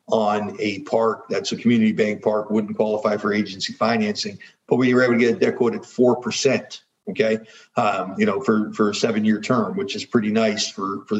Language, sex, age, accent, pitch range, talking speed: English, male, 50-69, American, 110-165 Hz, 210 wpm